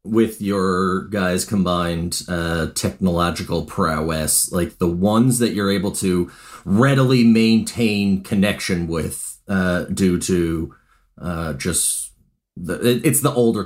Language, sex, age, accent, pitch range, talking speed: English, male, 30-49, American, 90-110 Hz, 115 wpm